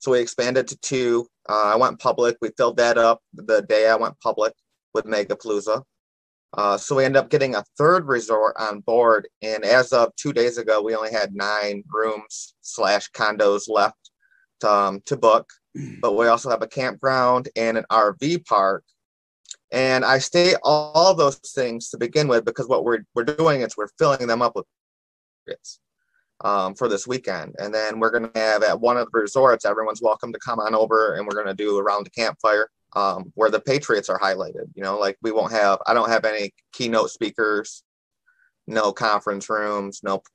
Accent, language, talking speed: American, English, 195 wpm